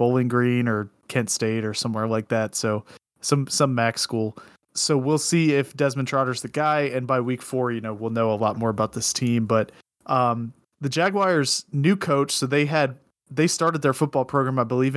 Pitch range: 120-145 Hz